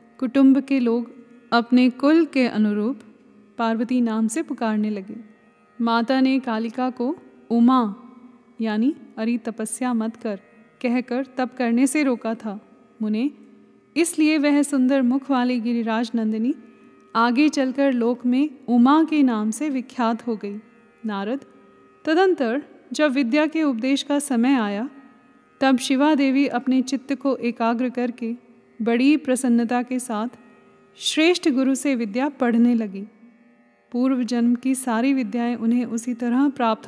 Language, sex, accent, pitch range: Hindi, female, native, 230-265 Hz